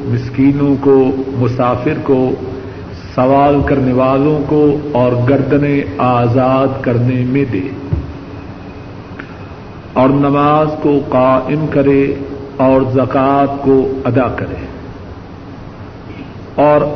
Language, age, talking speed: Urdu, 50-69, 90 wpm